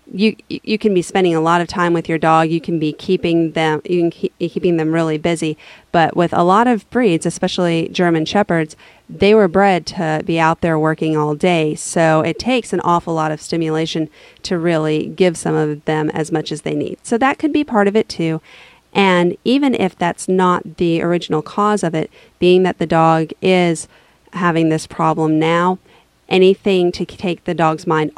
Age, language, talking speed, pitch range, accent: 40-59, English, 200 wpm, 160-190 Hz, American